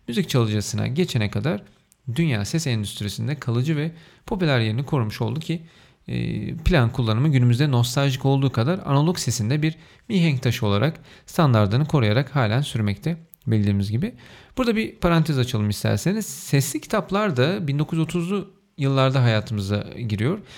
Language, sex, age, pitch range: Turkish, male, 40-59, 115-165 Hz